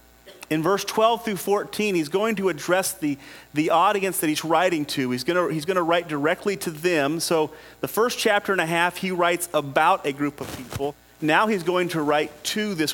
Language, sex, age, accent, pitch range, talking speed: English, male, 40-59, American, 155-210 Hz, 210 wpm